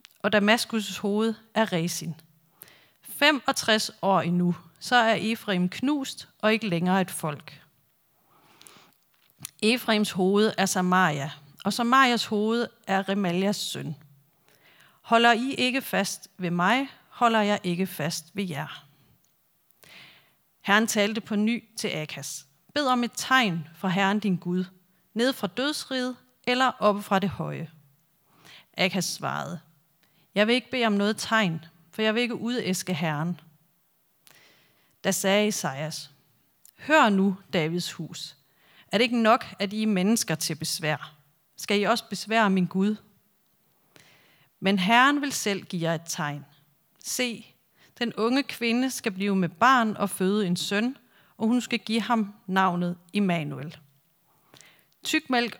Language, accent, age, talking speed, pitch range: Danish, native, 40-59, 135 wpm, 165-225 Hz